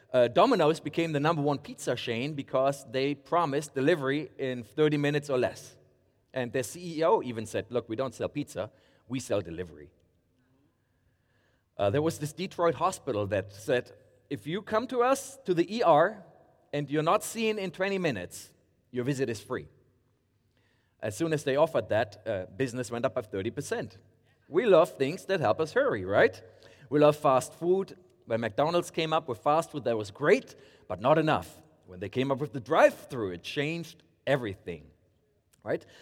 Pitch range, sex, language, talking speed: 120-165 Hz, male, English, 175 wpm